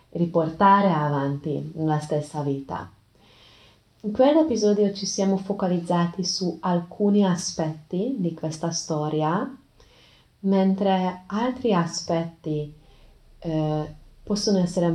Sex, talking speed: female, 90 wpm